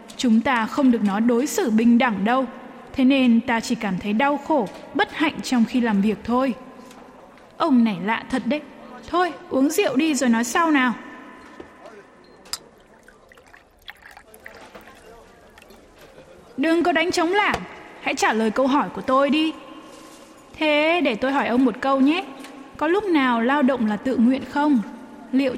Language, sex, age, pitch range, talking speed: Vietnamese, female, 20-39, 235-310 Hz, 160 wpm